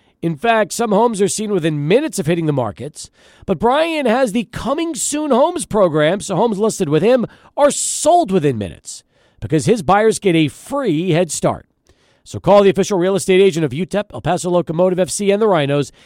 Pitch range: 165-235 Hz